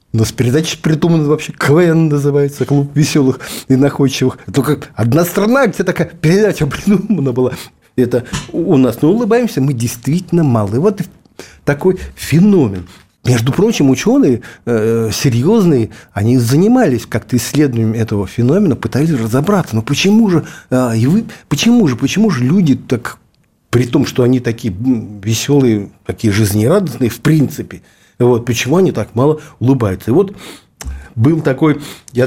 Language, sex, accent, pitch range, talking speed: Russian, male, native, 115-155 Hz, 140 wpm